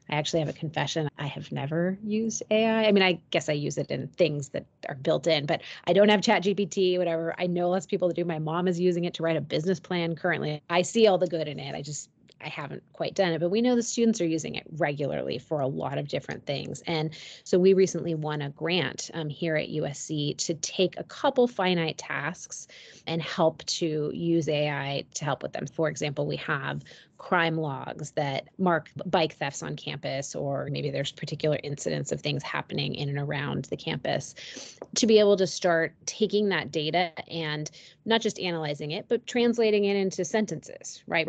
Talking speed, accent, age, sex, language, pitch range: 210 wpm, American, 30-49, female, English, 150-185 Hz